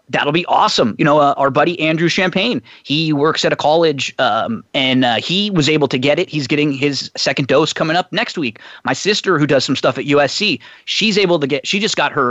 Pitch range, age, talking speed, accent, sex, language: 145-180 Hz, 30-49, 240 wpm, American, male, English